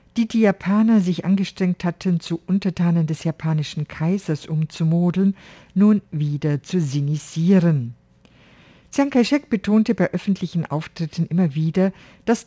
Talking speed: 120 wpm